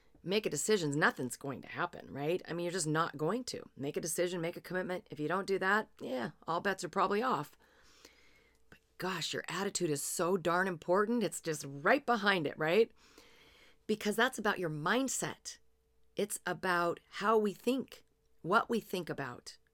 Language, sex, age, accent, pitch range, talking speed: English, female, 40-59, American, 150-190 Hz, 180 wpm